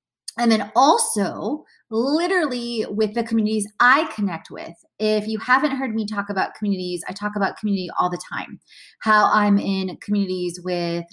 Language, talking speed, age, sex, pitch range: English, 160 wpm, 20-39, female, 200-240 Hz